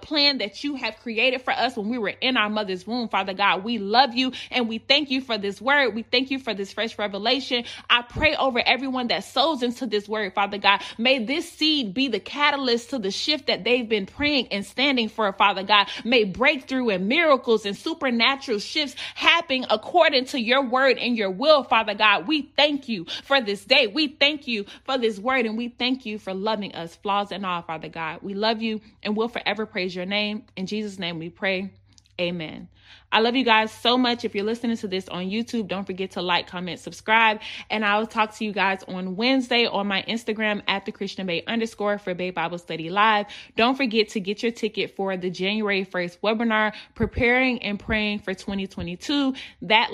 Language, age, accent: English, 20-39, American